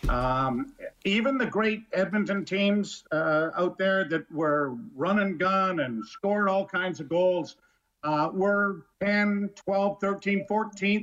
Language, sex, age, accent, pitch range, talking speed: English, male, 50-69, American, 170-210 Hz, 135 wpm